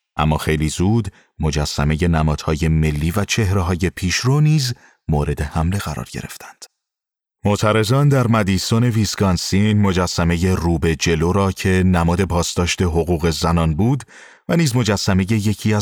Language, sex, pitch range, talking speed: Persian, male, 85-105 Hz, 120 wpm